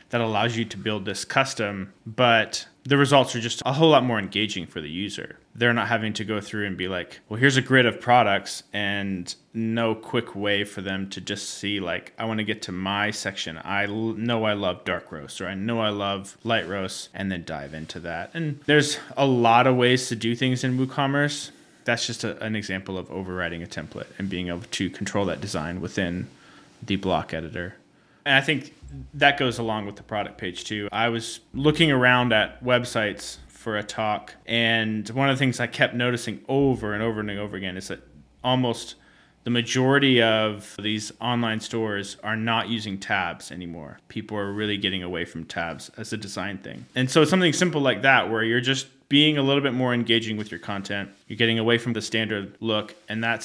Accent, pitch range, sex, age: American, 100-120 Hz, male, 20-39